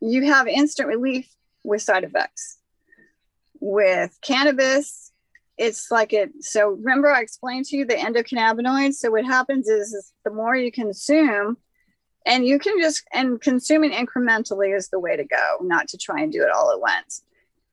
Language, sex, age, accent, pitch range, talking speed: English, female, 40-59, American, 215-280 Hz, 170 wpm